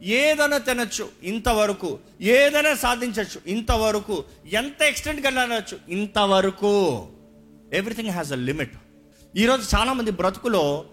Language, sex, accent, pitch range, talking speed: Telugu, male, native, 145-220 Hz, 100 wpm